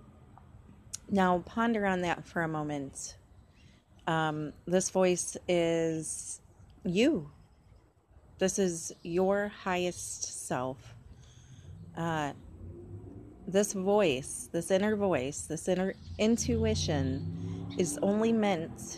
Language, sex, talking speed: English, female, 90 wpm